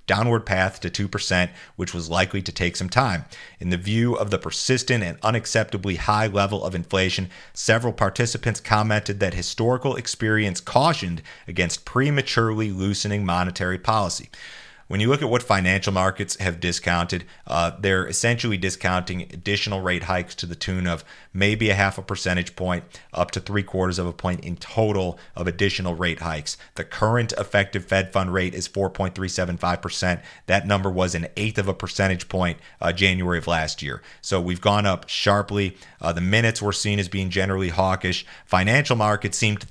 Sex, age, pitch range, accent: male, 40-59, 90-105 Hz, American